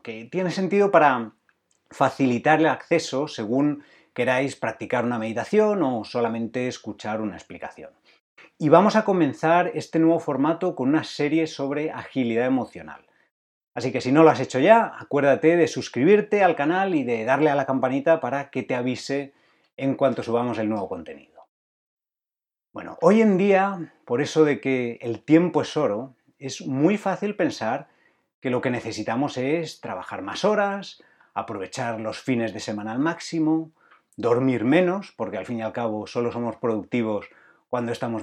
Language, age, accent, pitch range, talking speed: Spanish, 30-49, Spanish, 120-165 Hz, 160 wpm